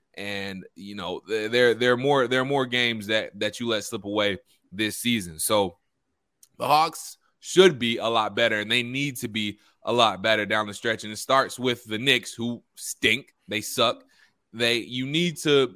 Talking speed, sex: 200 wpm, male